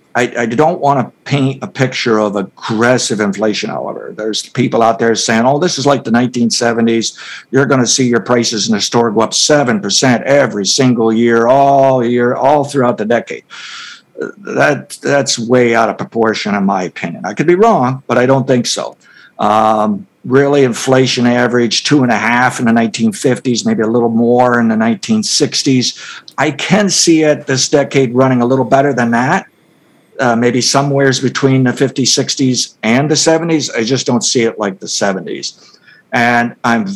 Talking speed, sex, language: 180 wpm, male, English